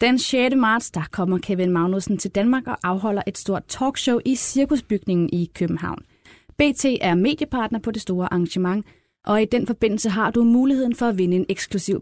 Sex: female